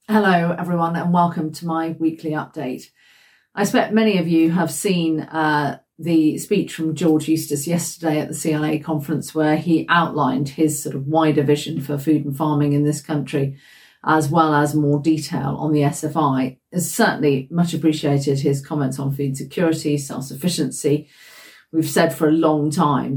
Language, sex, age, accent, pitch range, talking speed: English, female, 40-59, British, 145-160 Hz, 170 wpm